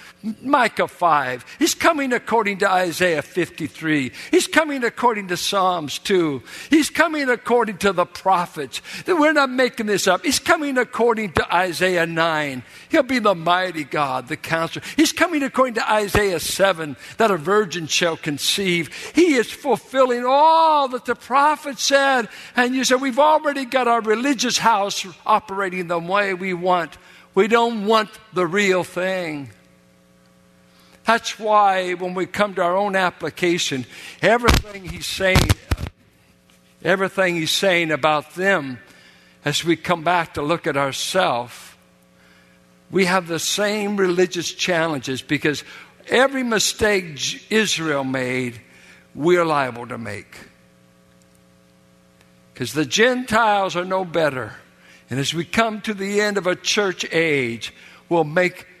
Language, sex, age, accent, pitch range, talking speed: English, male, 60-79, American, 150-220 Hz, 140 wpm